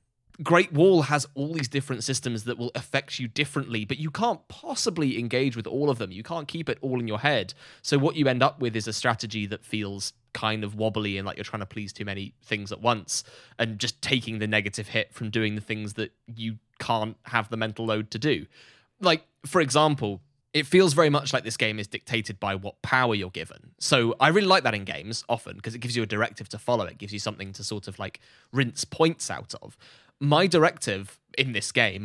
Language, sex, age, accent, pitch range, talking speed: English, male, 10-29, British, 110-140 Hz, 230 wpm